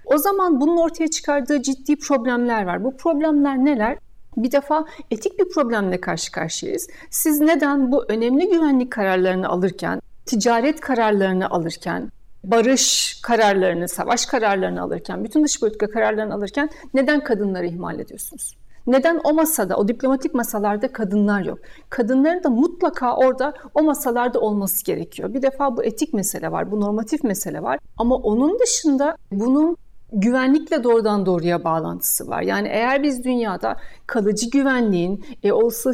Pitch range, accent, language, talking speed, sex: 215-280 Hz, native, Turkish, 140 wpm, female